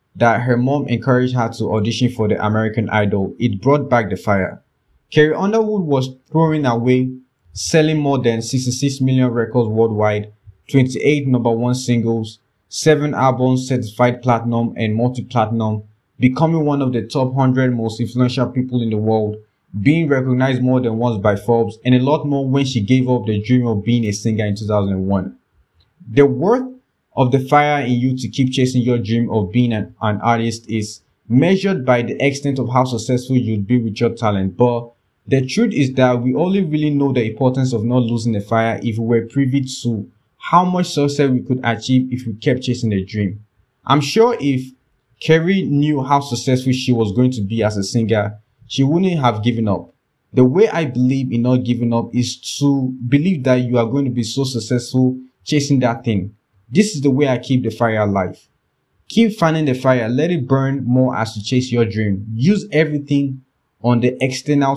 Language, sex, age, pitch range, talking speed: English, male, 20-39, 115-135 Hz, 190 wpm